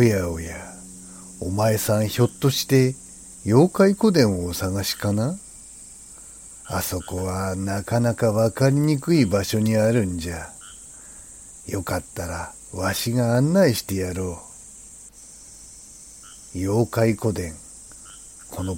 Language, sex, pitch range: Japanese, male, 95-120 Hz